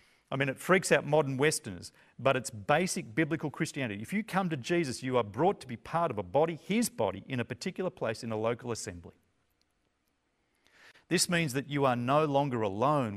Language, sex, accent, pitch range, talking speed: English, male, Australian, 115-165 Hz, 200 wpm